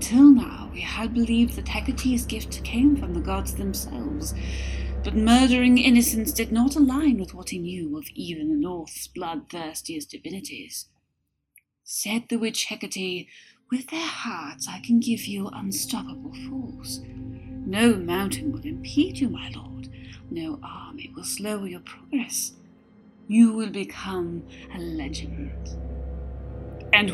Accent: British